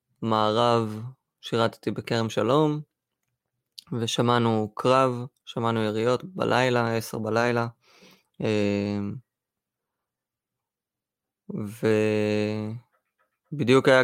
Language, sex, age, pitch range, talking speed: Hebrew, male, 20-39, 110-135 Hz, 55 wpm